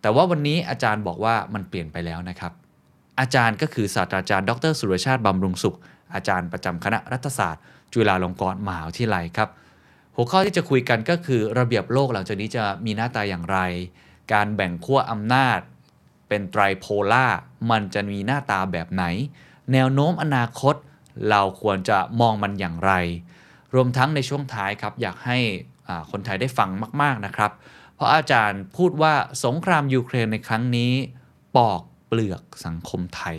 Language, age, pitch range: Thai, 20-39, 95-125 Hz